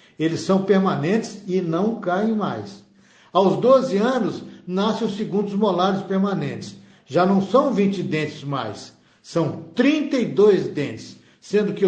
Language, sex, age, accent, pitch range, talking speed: Portuguese, male, 60-79, Brazilian, 170-200 Hz, 130 wpm